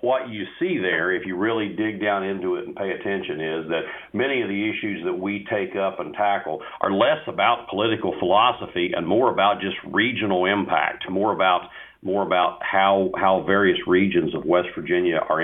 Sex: male